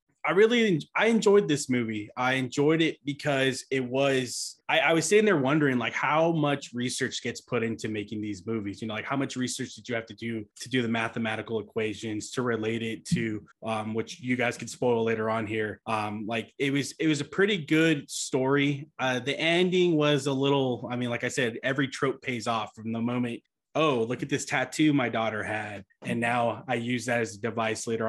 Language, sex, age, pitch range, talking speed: English, male, 20-39, 110-140 Hz, 220 wpm